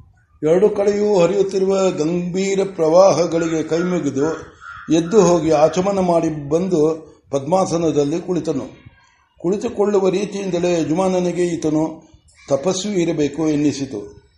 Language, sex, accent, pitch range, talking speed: Kannada, male, native, 150-180 Hz, 85 wpm